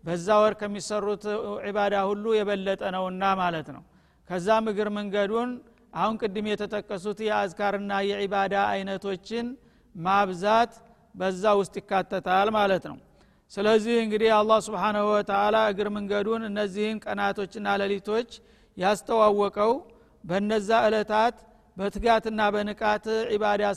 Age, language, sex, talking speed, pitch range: 50-69, Amharic, male, 100 wpm, 195-220 Hz